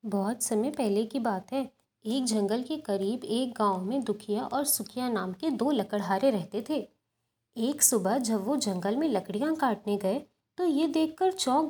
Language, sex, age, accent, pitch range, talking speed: Hindi, female, 20-39, native, 215-295 Hz, 180 wpm